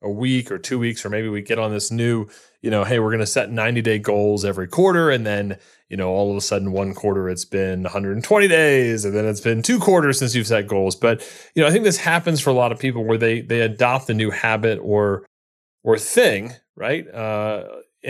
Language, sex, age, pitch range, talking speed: English, male, 30-49, 115-155 Hz, 235 wpm